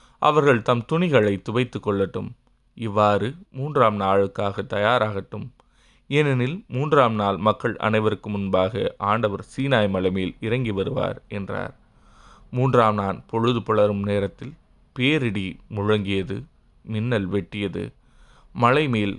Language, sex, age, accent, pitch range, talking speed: Tamil, male, 20-39, native, 100-120 Hz, 95 wpm